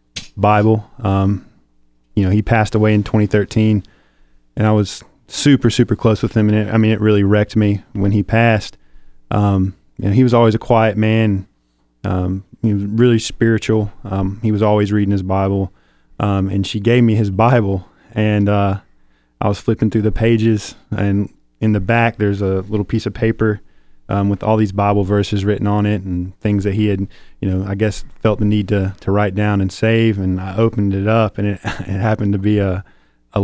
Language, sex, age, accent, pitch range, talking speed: English, male, 20-39, American, 95-110 Hz, 200 wpm